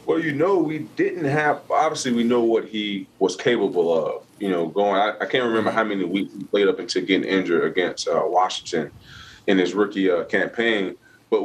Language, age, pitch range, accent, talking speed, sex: English, 20-39, 90-115 Hz, American, 195 wpm, male